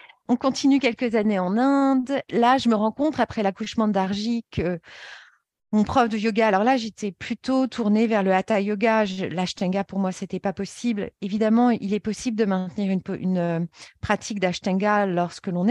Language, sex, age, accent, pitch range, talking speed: French, female, 40-59, French, 185-230 Hz, 175 wpm